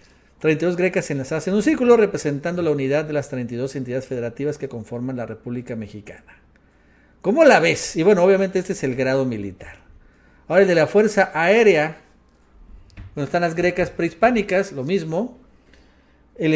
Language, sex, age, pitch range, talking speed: Spanish, male, 50-69, 130-195 Hz, 165 wpm